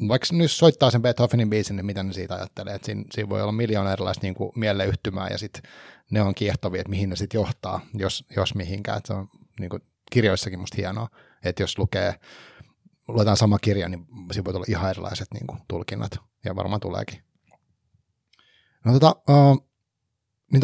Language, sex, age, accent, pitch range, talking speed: Finnish, male, 30-49, native, 100-120 Hz, 180 wpm